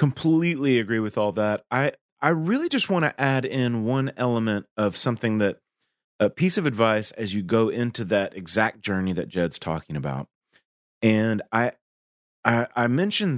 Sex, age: male, 30-49